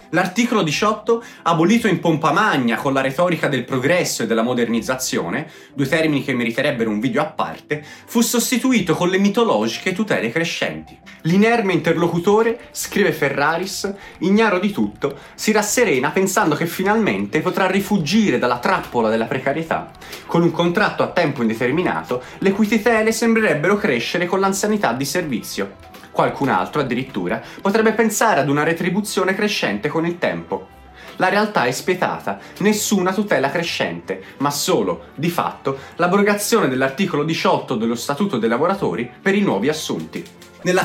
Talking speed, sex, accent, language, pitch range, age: 140 wpm, male, native, Italian, 145-210 Hz, 30-49